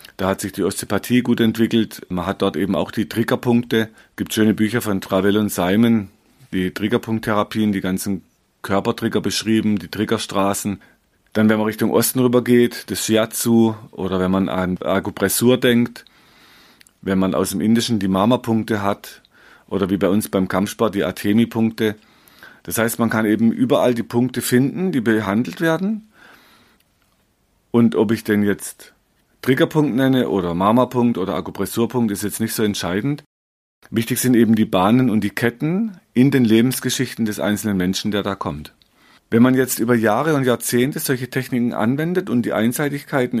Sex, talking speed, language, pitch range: male, 165 wpm, German, 100-125 Hz